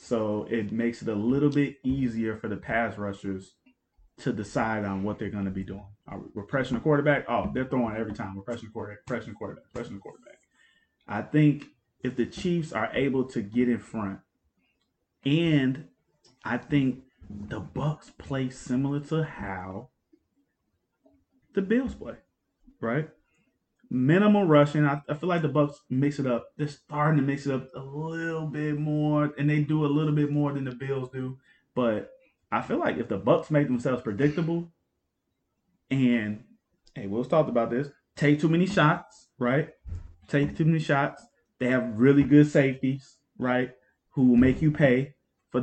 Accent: American